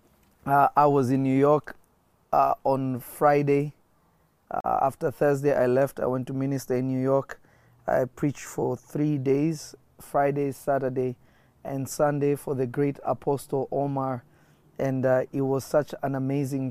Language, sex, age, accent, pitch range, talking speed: English, male, 30-49, South African, 125-145 Hz, 150 wpm